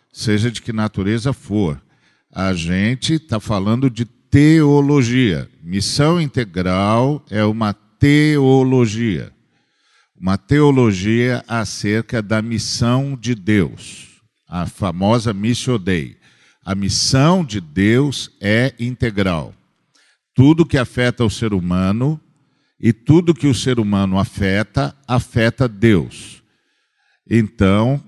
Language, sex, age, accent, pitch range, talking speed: Portuguese, male, 50-69, Brazilian, 105-135 Hz, 105 wpm